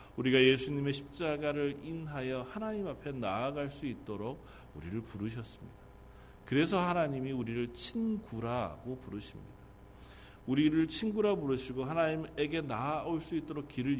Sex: male